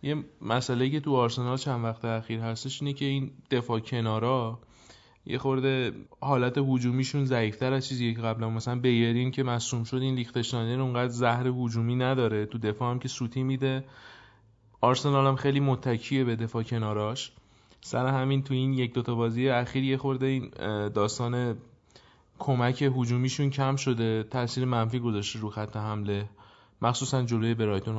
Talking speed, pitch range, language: 155 wpm, 115-135 Hz, Persian